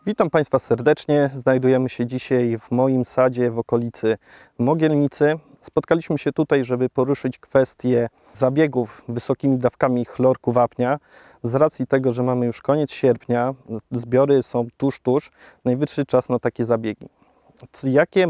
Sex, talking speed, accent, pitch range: male, 135 wpm, native, 125-150 Hz